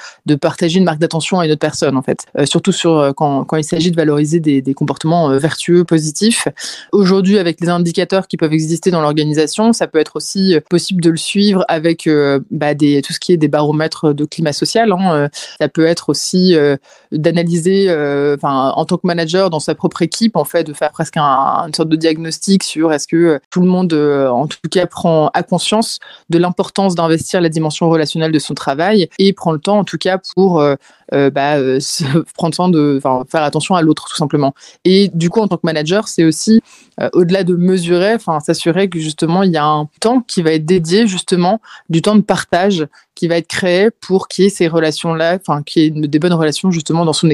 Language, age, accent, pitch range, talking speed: French, 20-39, French, 155-185 Hz, 225 wpm